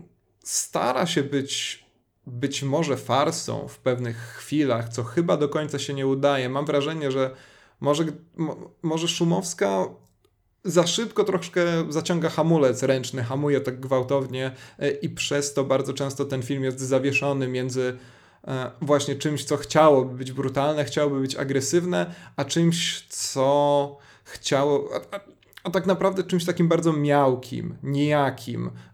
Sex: male